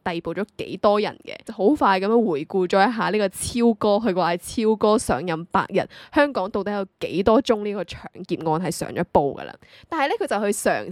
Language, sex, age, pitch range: Chinese, female, 10-29, 195-260 Hz